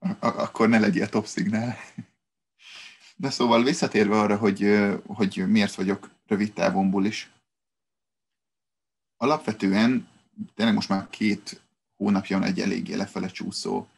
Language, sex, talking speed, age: Hungarian, male, 120 wpm, 30-49